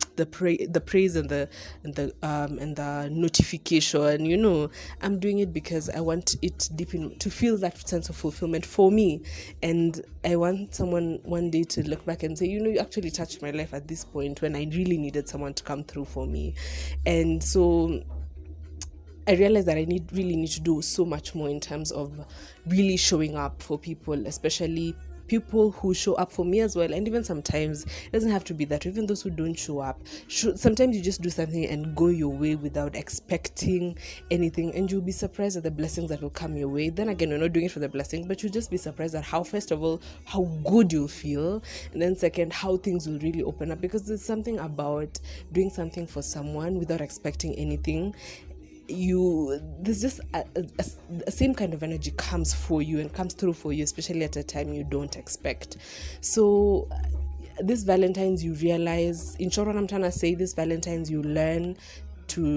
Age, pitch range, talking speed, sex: 20-39, 145-185 Hz, 205 wpm, female